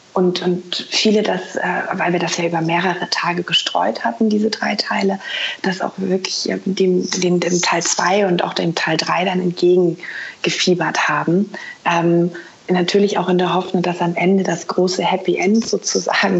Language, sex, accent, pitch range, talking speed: German, female, German, 175-190 Hz, 175 wpm